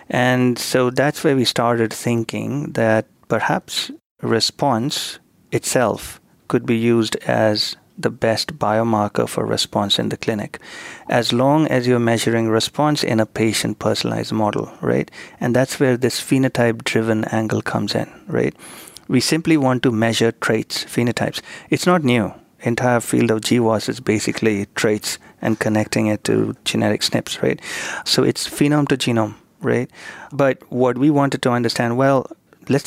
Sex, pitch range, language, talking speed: male, 110-130 Hz, English, 150 wpm